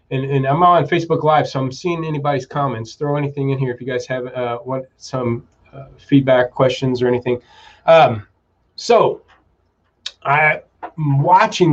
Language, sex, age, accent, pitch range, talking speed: English, male, 30-49, American, 125-145 Hz, 160 wpm